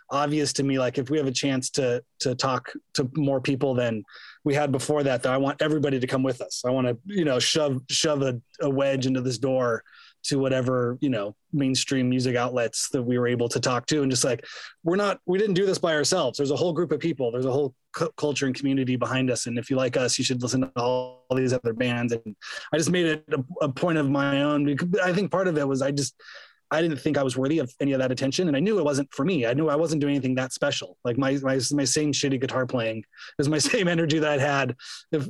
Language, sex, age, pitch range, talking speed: English, male, 20-39, 125-150 Hz, 265 wpm